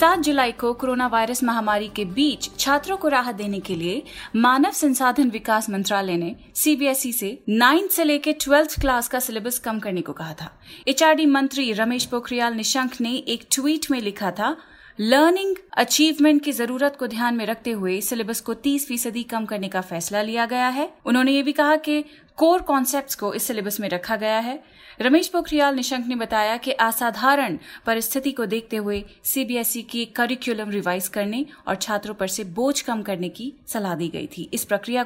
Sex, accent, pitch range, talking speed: female, native, 215-270 Hz, 185 wpm